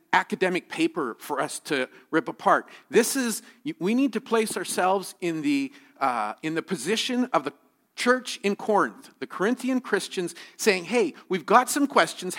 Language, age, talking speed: English, 50-69, 165 wpm